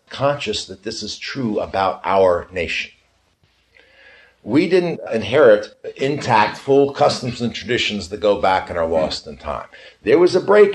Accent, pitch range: American, 105-150 Hz